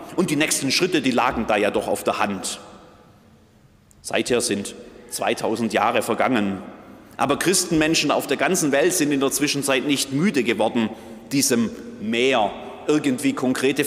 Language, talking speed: German, 145 wpm